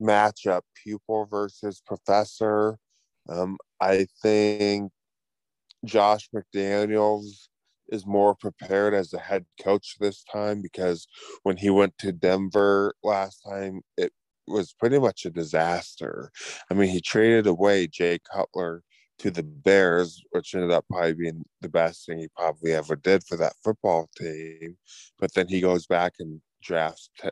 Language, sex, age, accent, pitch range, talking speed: English, male, 20-39, American, 85-105 Hz, 145 wpm